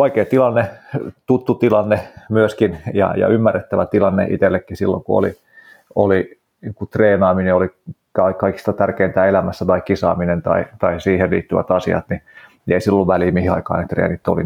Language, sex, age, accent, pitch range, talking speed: Finnish, male, 30-49, native, 90-105 Hz, 155 wpm